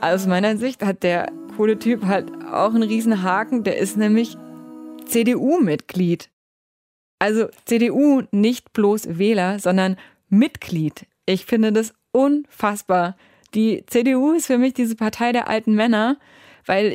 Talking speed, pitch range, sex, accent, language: 135 wpm, 195-235 Hz, female, German, German